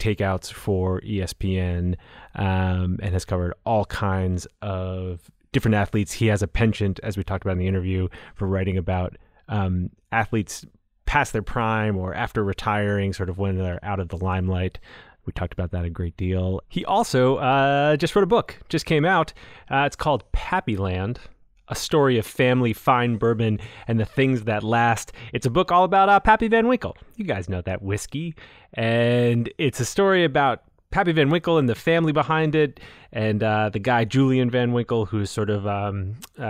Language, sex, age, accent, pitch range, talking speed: English, male, 30-49, American, 95-125 Hz, 185 wpm